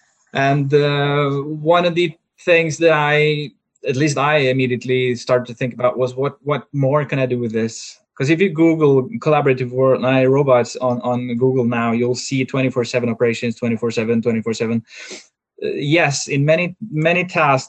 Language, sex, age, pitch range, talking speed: English, male, 20-39, 120-145 Hz, 165 wpm